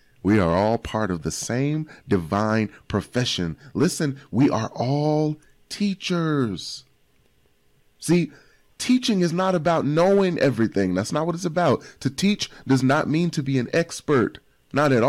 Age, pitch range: 30-49, 105-160 Hz